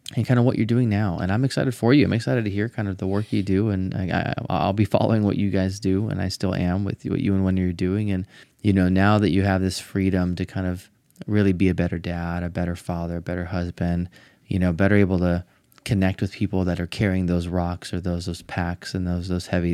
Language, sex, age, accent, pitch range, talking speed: English, male, 20-39, American, 90-105 Hz, 270 wpm